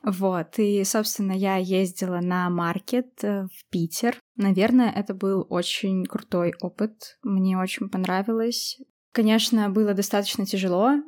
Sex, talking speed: female, 120 wpm